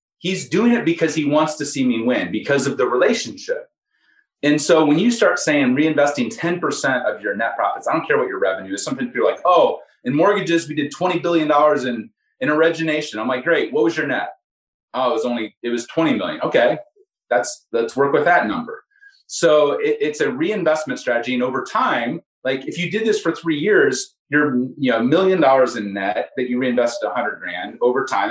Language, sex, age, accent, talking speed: English, male, 30-49, American, 210 wpm